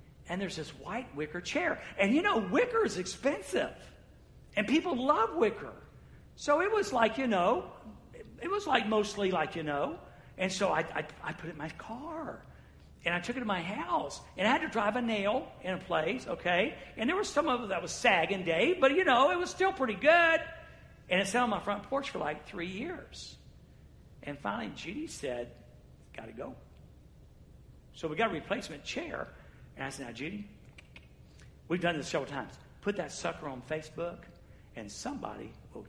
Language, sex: English, male